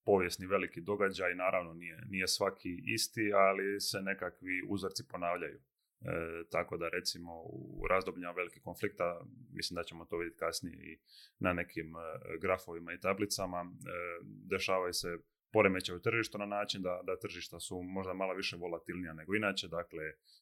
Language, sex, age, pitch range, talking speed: Croatian, male, 30-49, 85-100 Hz, 155 wpm